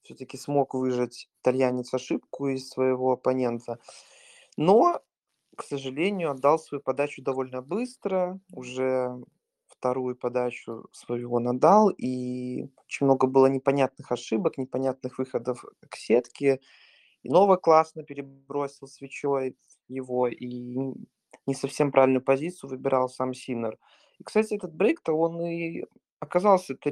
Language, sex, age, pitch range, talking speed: Russian, male, 20-39, 130-150 Hz, 115 wpm